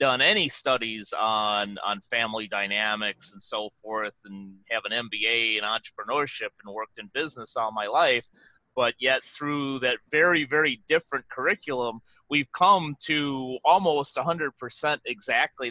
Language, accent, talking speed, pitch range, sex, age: English, American, 140 wpm, 120-155 Hz, male, 30-49